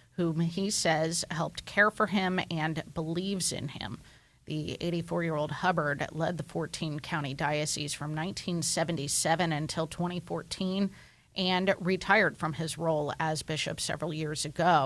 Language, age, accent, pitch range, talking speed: English, 30-49, American, 155-185 Hz, 130 wpm